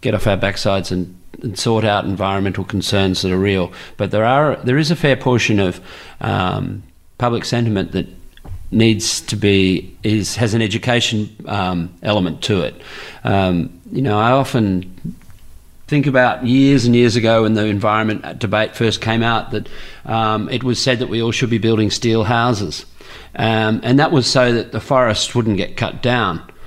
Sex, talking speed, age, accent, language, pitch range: male, 180 wpm, 40-59, Australian, English, 95-120 Hz